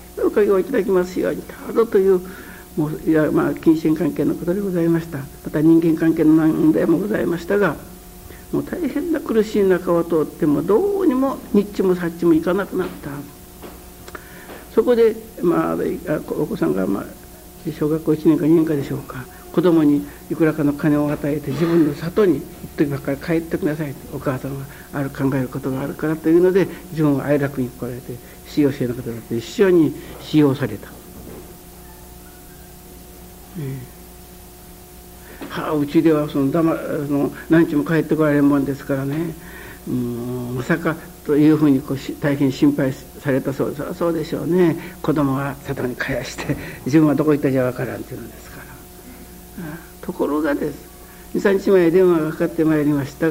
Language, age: Japanese, 60-79